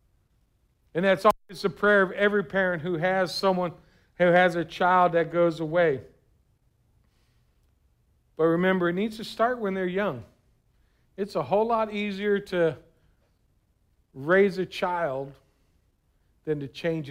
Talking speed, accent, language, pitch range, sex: 135 wpm, American, English, 135-185 Hz, male